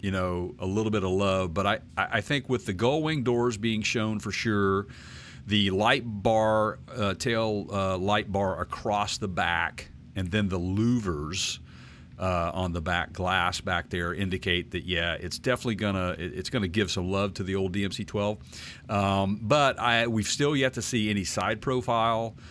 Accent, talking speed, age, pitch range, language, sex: American, 185 wpm, 50-69, 95-115 Hz, English, male